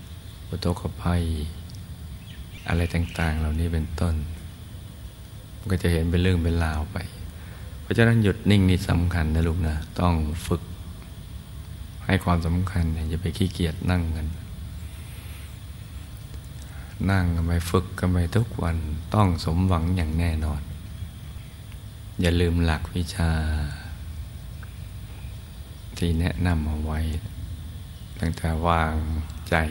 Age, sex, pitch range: 60-79, male, 80-95 Hz